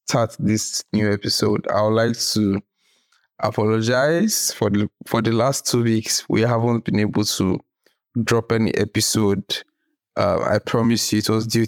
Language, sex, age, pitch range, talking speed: English, male, 20-39, 115-140 Hz, 160 wpm